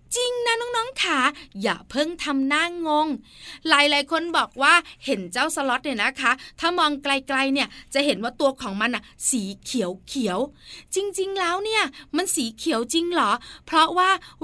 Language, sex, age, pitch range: Thai, female, 20-39, 255-345 Hz